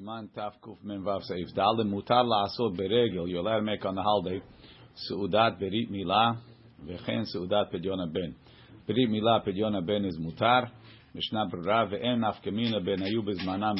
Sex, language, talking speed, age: male, English, 75 wpm, 40-59